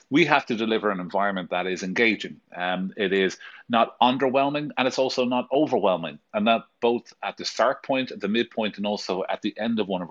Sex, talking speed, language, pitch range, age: male, 220 wpm, English, 100-120 Hz, 30-49